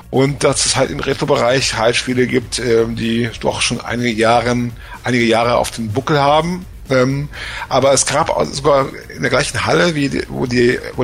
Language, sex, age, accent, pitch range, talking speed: German, male, 50-69, German, 115-130 Hz, 160 wpm